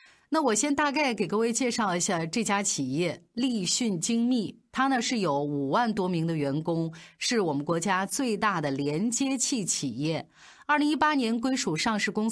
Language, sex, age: Chinese, female, 30-49